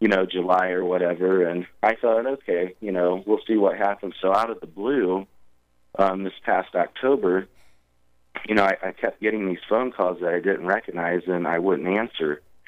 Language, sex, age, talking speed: English, male, 30-49, 195 wpm